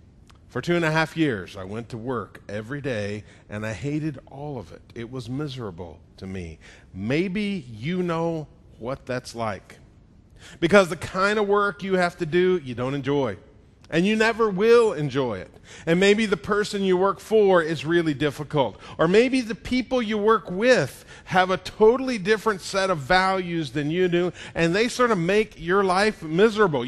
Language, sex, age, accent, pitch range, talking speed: English, male, 40-59, American, 130-195 Hz, 185 wpm